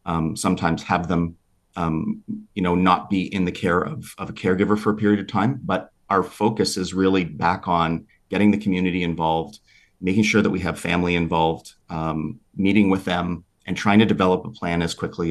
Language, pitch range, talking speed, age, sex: English, 85-105 Hz, 200 wpm, 40-59, male